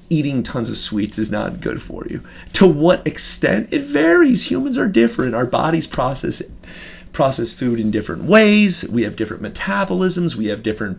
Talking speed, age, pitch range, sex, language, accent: 180 wpm, 30-49, 115-175 Hz, male, English, American